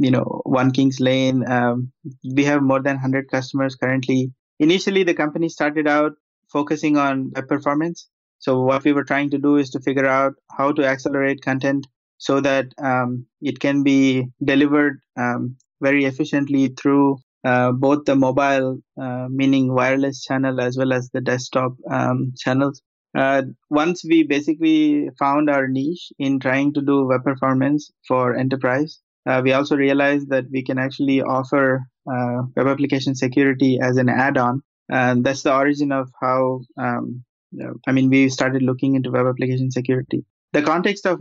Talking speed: 165 wpm